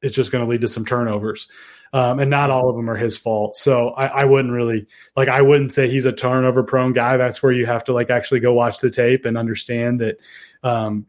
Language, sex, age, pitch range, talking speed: English, male, 20-39, 120-135 Hz, 250 wpm